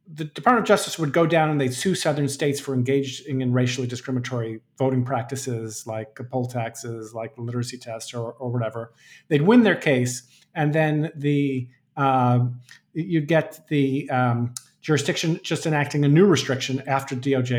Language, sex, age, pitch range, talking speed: English, male, 50-69, 130-175 Hz, 165 wpm